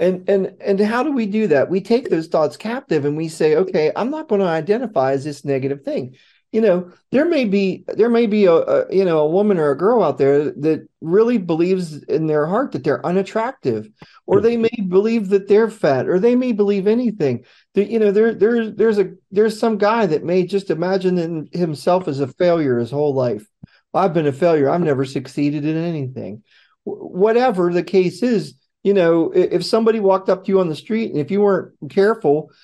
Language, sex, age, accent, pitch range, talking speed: English, male, 40-59, American, 155-215 Hz, 215 wpm